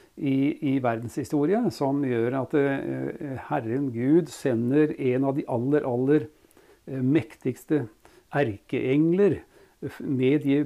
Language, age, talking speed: English, 60-79, 100 wpm